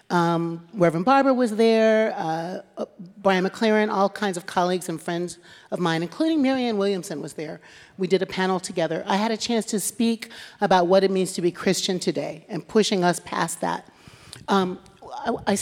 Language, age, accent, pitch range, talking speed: English, 40-59, American, 170-210 Hz, 180 wpm